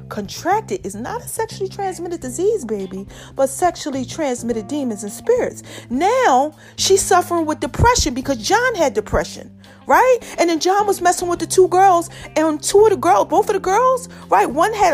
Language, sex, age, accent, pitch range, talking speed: English, female, 40-59, American, 265-370 Hz, 180 wpm